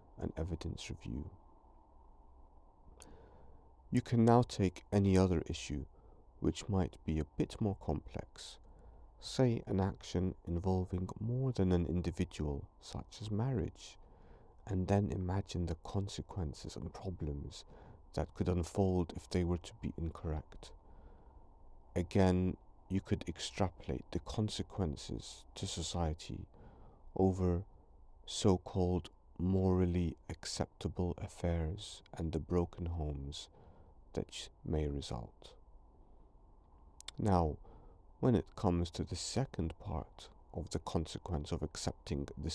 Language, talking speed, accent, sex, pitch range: English, 110 wpm, British, male, 75-95 Hz